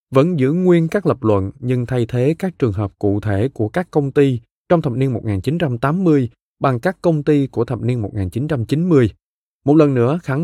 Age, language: 20-39, Vietnamese